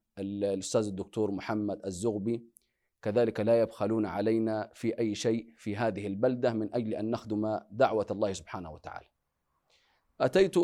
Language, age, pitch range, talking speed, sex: Arabic, 30-49, 110-135 Hz, 130 wpm, male